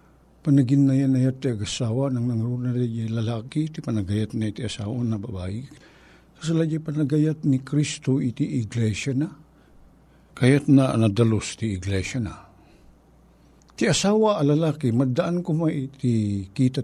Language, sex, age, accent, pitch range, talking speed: Filipino, male, 60-79, American, 110-160 Hz, 135 wpm